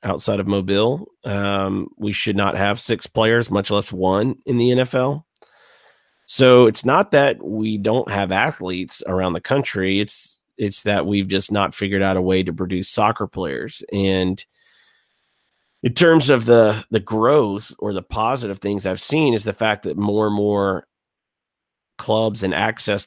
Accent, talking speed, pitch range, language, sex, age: American, 165 wpm, 95-115 Hz, English, male, 30-49